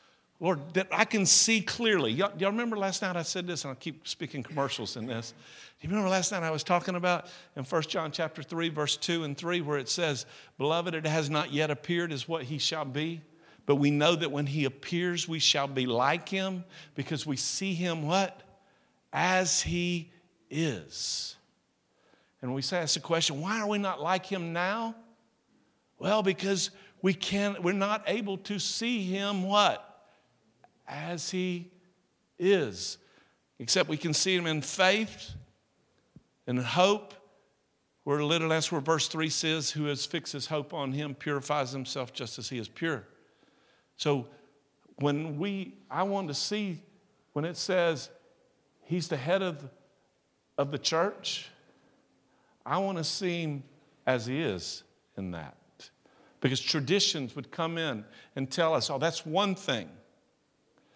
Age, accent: 50-69, American